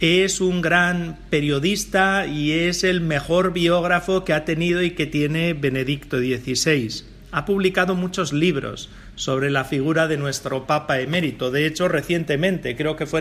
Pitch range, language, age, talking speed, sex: 135-175 Hz, Spanish, 40-59, 155 wpm, male